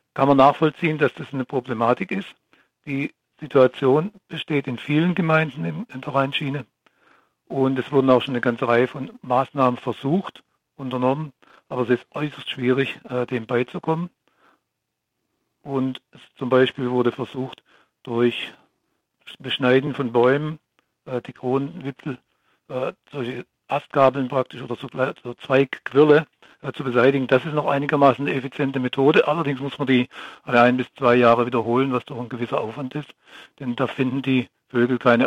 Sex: male